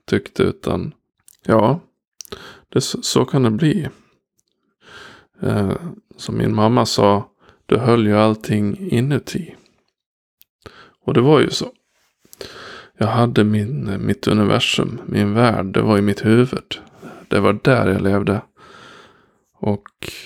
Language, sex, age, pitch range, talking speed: Swedish, male, 20-39, 100-125 Hz, 115 wpm